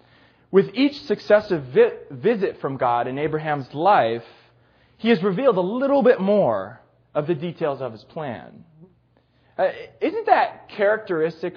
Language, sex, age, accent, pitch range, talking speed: English, male, 30-49, American, 135-225 Hz, 135 wpm